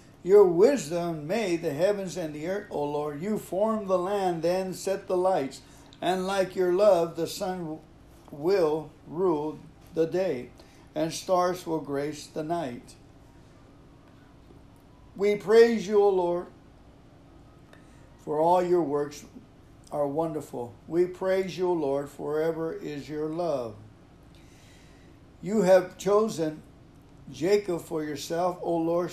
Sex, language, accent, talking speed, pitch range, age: male, English, American, 130 wpm, 150-185 Hz, 60-79